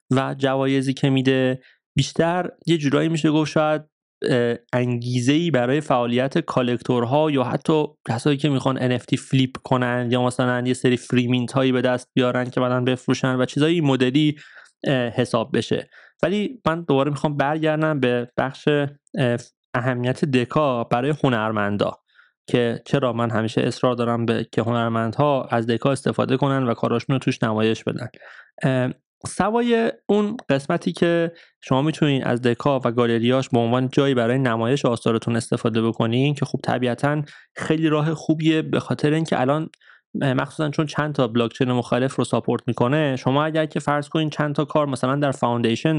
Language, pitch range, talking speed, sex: Persian, 120-150 Hz, 155 wpm, male